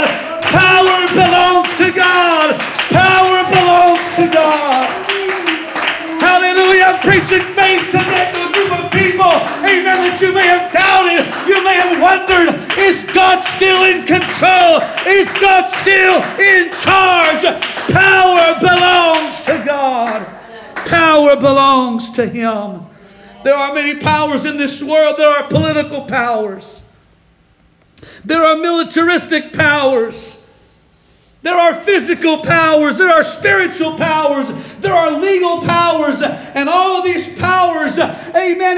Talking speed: 120 wpm